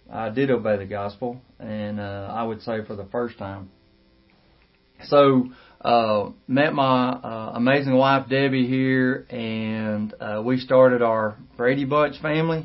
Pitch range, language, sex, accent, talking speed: 115-135 Hz, English, male, American, 145 wpm